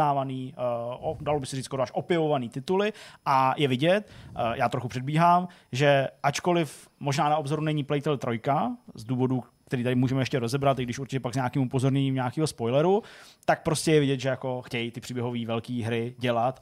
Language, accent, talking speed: Czech, native, 175 wpm